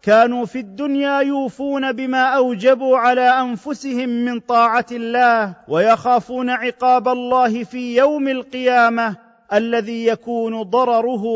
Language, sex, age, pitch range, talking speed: Arabic, male, 40-59, 230-255 Hz, 105 wpm